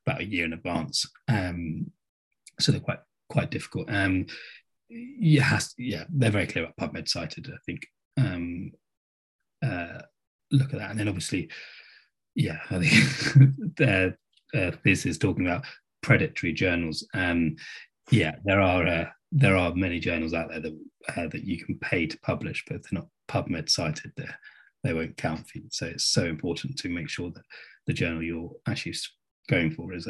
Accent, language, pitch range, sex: British, English, 85-115 Hz, male